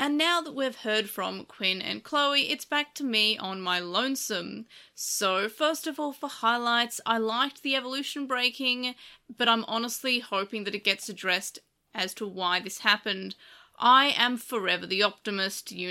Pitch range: 195-245 Hz